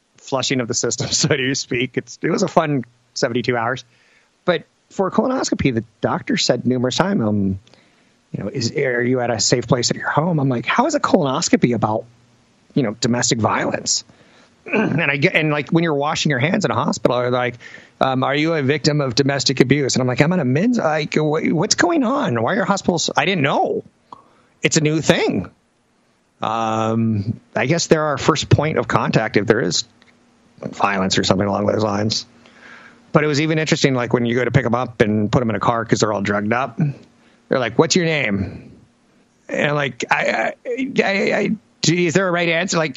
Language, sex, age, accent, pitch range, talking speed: English, male, 30-49, American, 120-165 Hz, 205 wpm